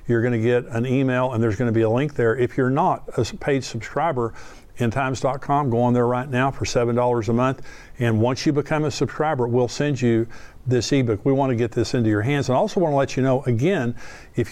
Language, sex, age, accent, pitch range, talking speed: English, male, 50-69, American, 120-140 Hz, 225 wpm